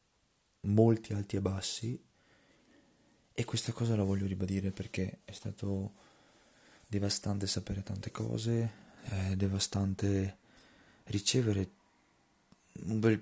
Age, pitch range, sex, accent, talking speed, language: 20-39, 95-115 Hz, male, native, 95 wpm, Italian